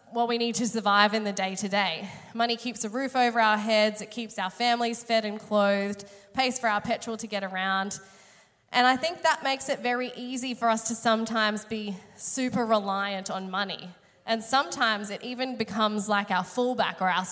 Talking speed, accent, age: 200 wpm, Australian, 10-29